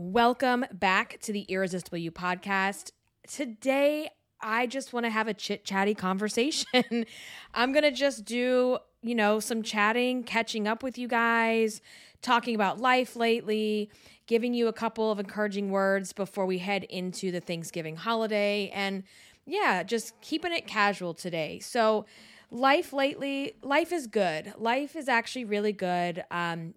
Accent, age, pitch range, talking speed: American, 20-39, 195-240 Hz, 150 wpm